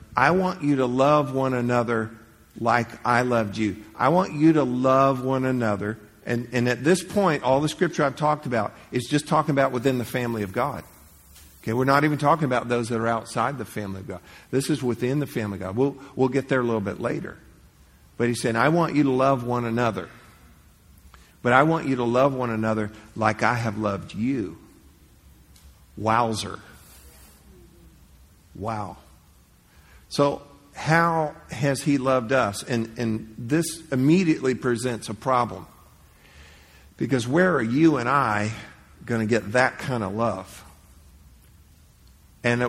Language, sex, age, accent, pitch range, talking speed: English, male, 50-69, American, 95-135 Hz, 165 wpm